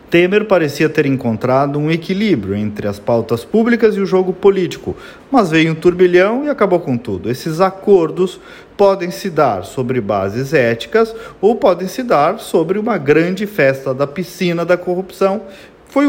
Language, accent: Portuguese, Brazilian